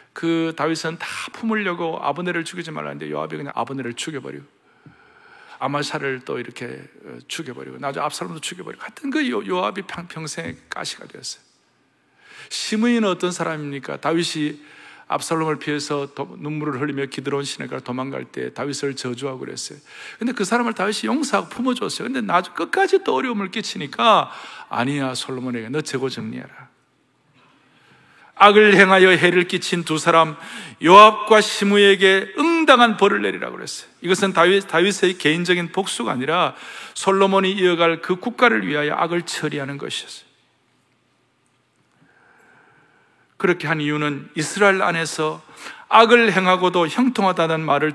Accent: native